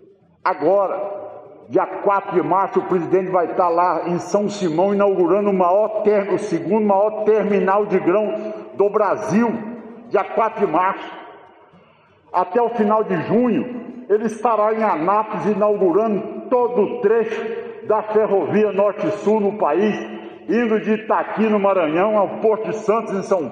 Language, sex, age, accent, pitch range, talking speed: Portuguese, male, 60-79, Brazilian, 185-215 Hz, 145 wpm